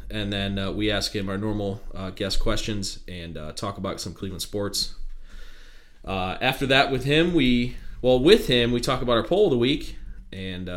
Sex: male